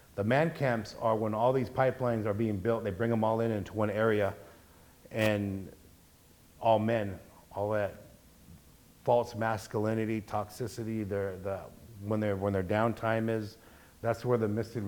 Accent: American